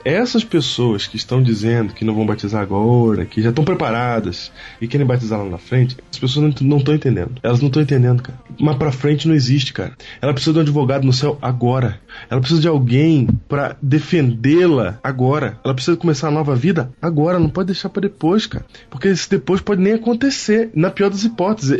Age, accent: 20-39, Brazilian